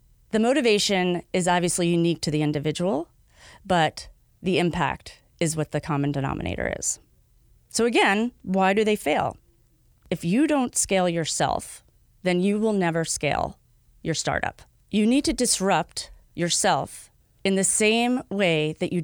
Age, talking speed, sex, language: 30-49, 145 wpm, female, English